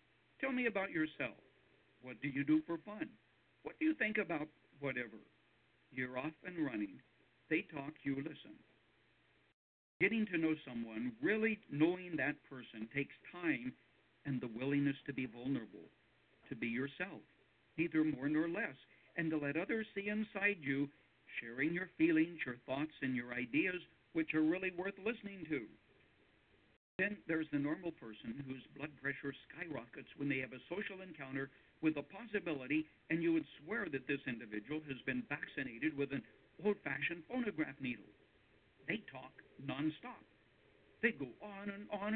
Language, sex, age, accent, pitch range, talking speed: English, male, 60-79, American, 130-180 Hz, 155 wpm